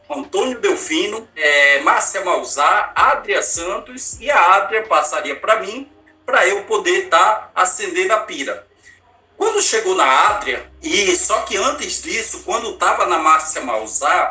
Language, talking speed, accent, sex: Portuguese, 145 wpm, Brazilian, male